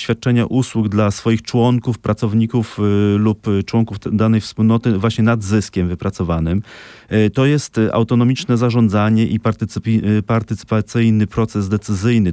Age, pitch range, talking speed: 30-49, 100-115 Hz, 125 wpm